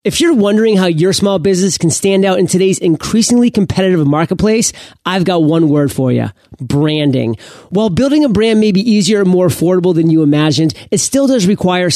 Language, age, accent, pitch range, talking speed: English, 30-49, American, 160-205 Hz, 195 wpm